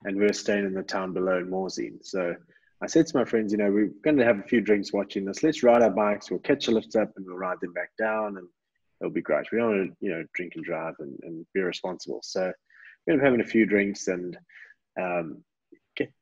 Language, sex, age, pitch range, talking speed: English, male, 20-39, 90-110 Hz, 250 wpm